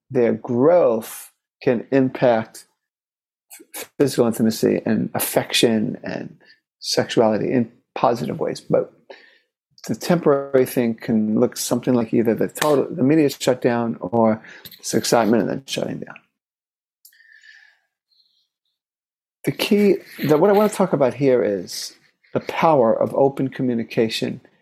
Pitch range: 120-155 Hz